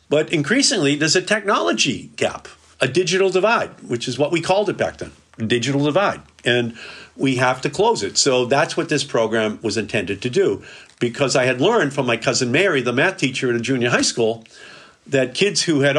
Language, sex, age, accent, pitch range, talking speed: English, male, 50-69, American, 120-160 Hz, 205 wpm